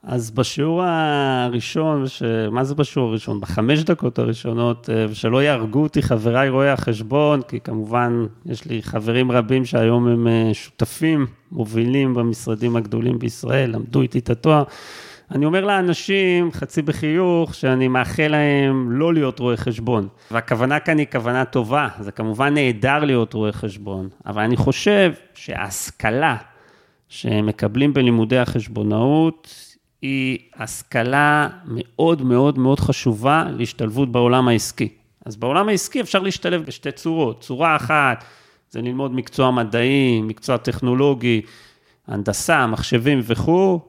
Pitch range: 120-155 Hz